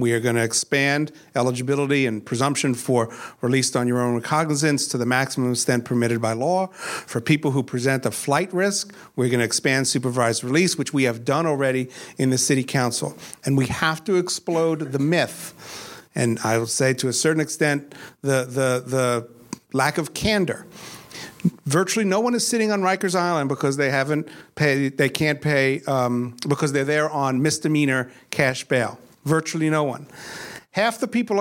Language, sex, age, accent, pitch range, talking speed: English, male, 50-69, American, 130-170 Hz, 180 wpm